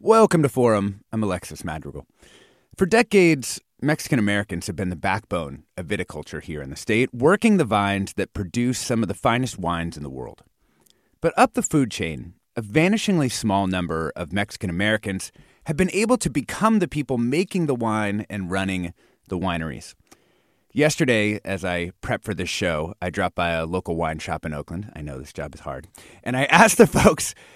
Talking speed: 185 wpm